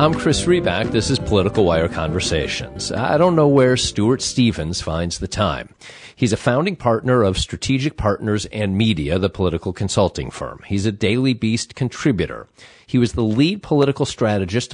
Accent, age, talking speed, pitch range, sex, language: American, 40-59, 165 wpm, 100-130 Hz, male, English